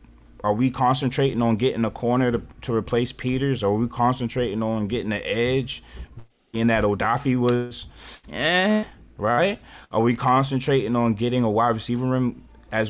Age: 20-39